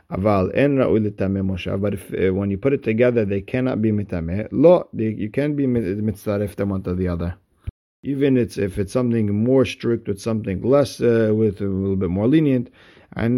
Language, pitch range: English, 100-120 Hz